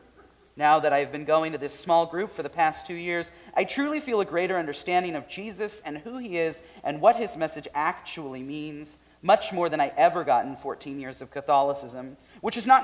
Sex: male